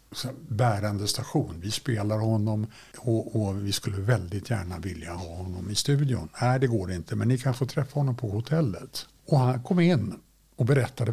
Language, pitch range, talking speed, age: Swedish, 110-145 Hz, 185 wpm, 60-79